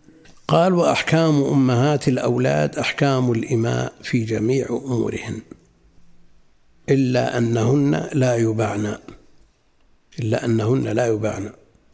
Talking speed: 85 wpm